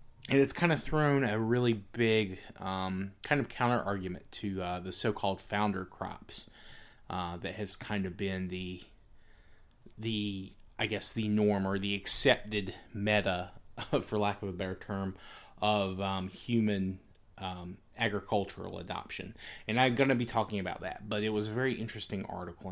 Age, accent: 20-39, American